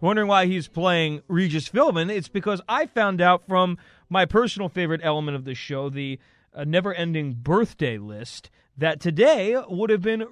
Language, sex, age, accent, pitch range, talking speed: English, male, 30-49, American, 130-170 Hz, 170 wpm